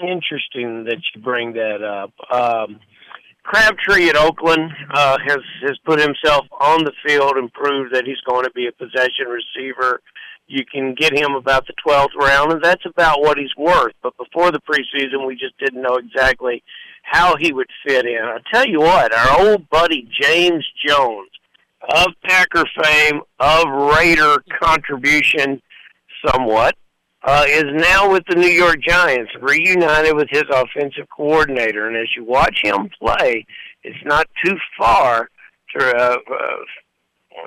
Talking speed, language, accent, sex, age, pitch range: 155 wpm, English, American, male, 60-79, 130-165 Hz